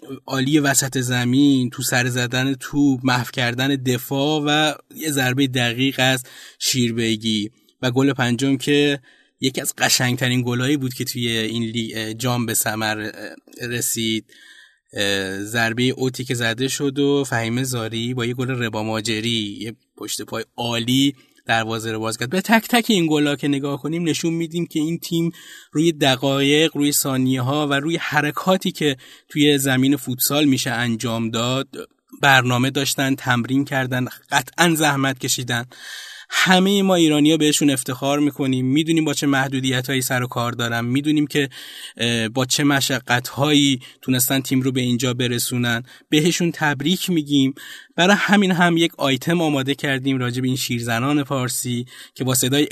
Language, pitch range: Persian, 125-145 Hz